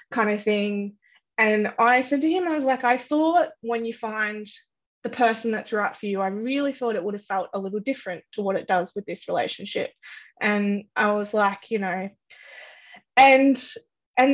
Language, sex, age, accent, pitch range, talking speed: English, female, 20-39, Australian, 210-250 Hz, 195 wpm